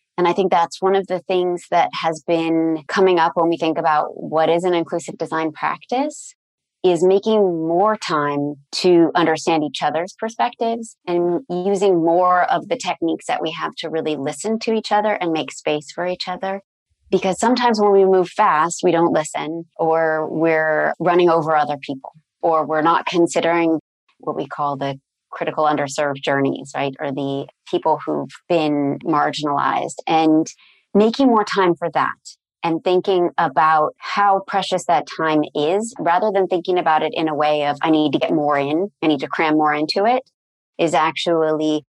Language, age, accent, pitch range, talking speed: English, 30-49, American, 155-185 Hz, 180 wpm